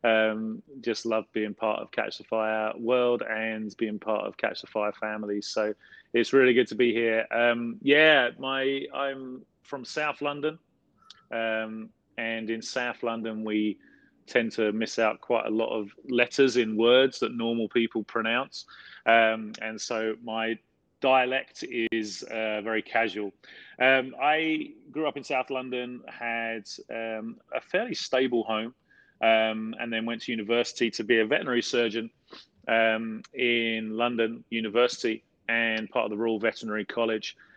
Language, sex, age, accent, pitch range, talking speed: English, male, 30-49, British, 110-125 Hz, 155 wpm